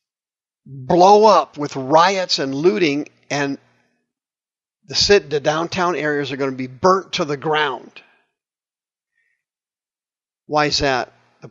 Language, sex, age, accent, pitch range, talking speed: English, male, 50-69, American, 140-185 Hz, 125 wpm